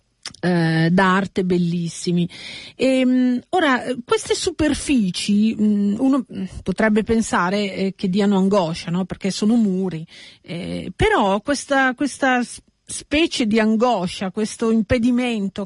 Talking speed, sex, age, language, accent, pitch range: 95 wpm, female, 40-59, Italian, native, 195-260 Hz